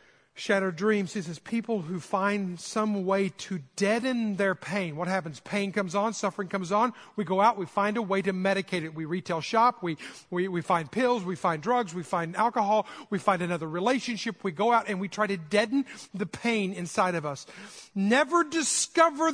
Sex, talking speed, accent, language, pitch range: male, 200 wpm, American, English, 195-260 Hz